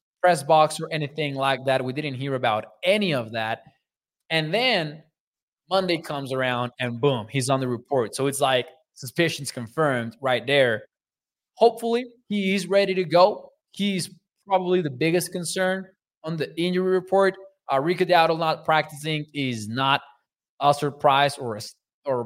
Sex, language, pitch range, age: male, English, 130-165 Hz, 20-39